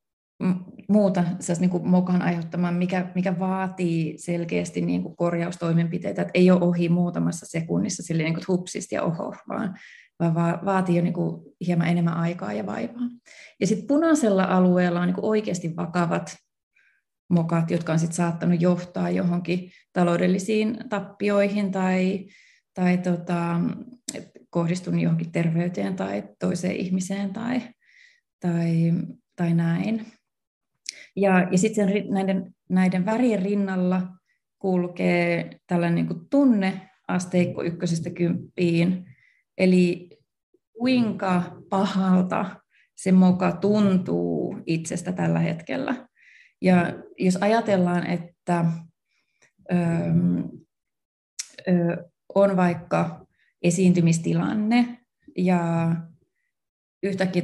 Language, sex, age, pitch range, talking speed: Finnish, female, 30-49, 170-195 Hz, 100 wpm